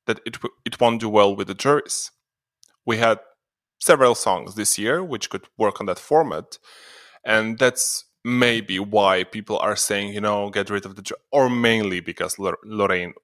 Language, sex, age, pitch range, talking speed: English, male, 20-39, 105-125 Hz, 170 wpm